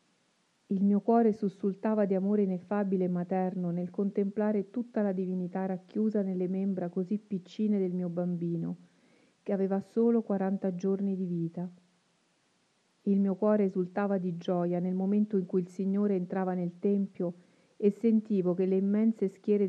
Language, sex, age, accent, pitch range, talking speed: Italian, female, 40-59, native, 180-200 Hz, 150 wpm